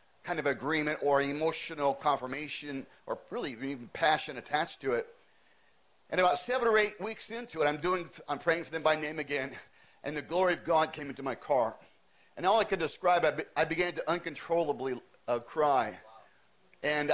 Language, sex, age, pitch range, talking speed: English, male, 40-59, 140-175 Hz, 180 wpm